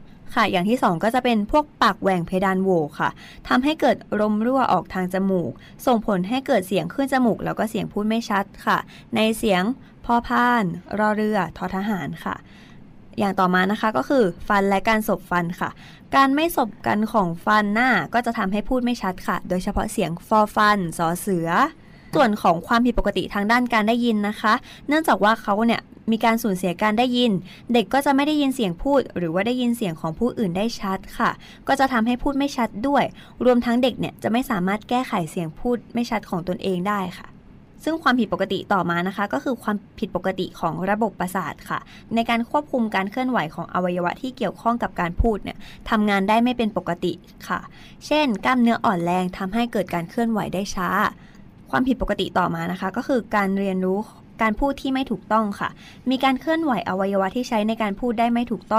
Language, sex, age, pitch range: Thai, female, 20-39, 190-240 Hz